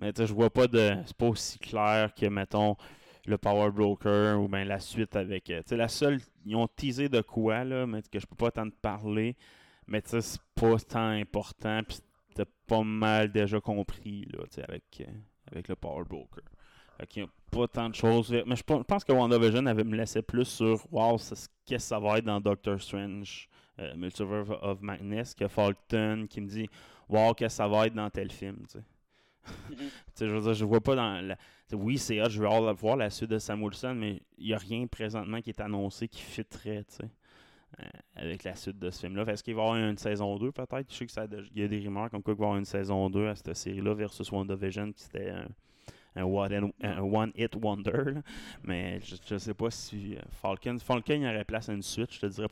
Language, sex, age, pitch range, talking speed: English, male, 20-39, 100-115 Hz, 225 wpm